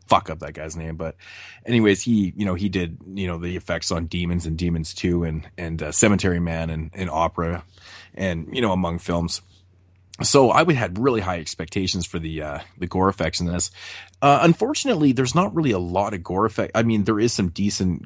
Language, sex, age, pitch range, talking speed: English, male, 20-39, 85-105 Hz, 215 wpm